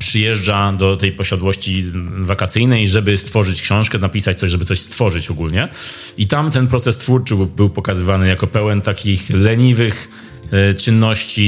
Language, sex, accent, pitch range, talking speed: Polish, male, native, 95-115 Hz, 135 wpm